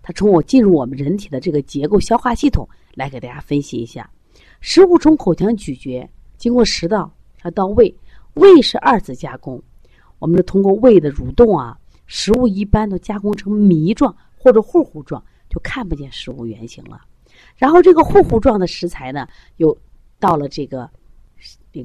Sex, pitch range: female, 150-235 Hz